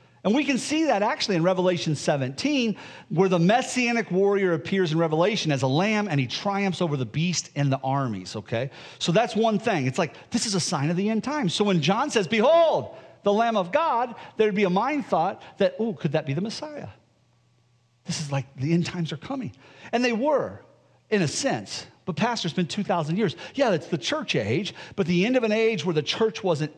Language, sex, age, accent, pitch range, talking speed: English, male, 40-59, American, 155-220 Hz, 220 wpm